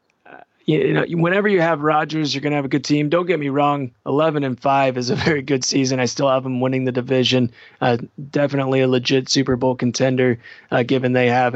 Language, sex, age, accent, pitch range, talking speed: English, male, 30-49, American, 125-140 Hz, 225 wpm